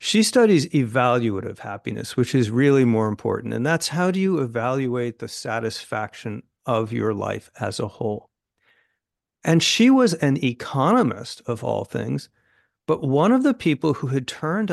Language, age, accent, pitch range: English, 50-69, American, 120-180 Hz